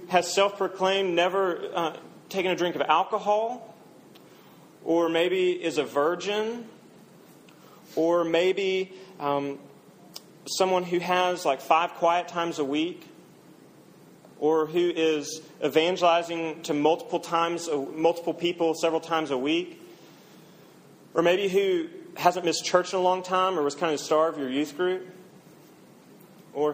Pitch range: 150-180 Hz